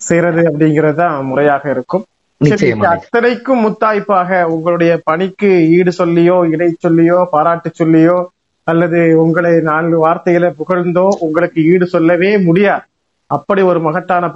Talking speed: 90 wpm